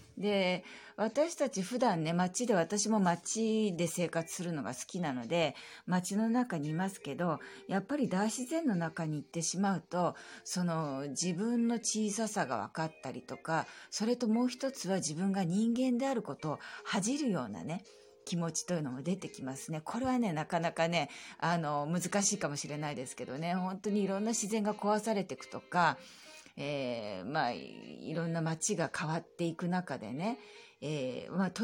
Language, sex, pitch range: Japanese, female, 160-225 Hz